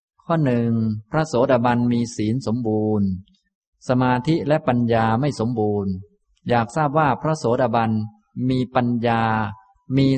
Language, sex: Thai, male